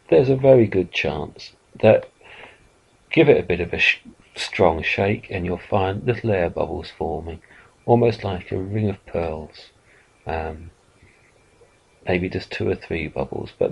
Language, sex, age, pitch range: English, male, 40-59, 85-115 Hz